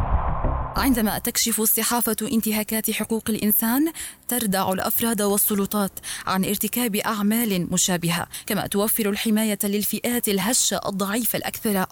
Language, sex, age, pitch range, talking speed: Arabic, female, 20-39, 200-225 Hz, 100 wpm